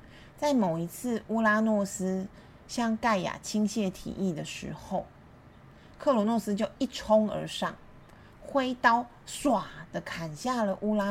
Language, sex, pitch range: Chinese, female, 170-220 Hz